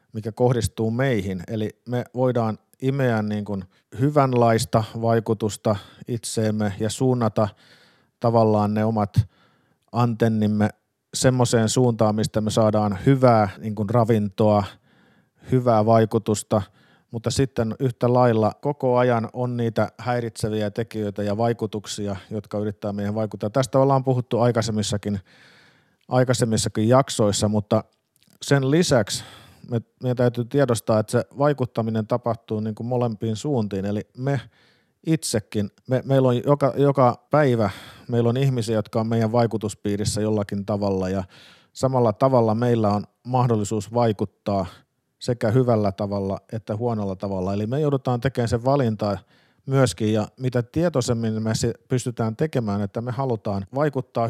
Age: 50-69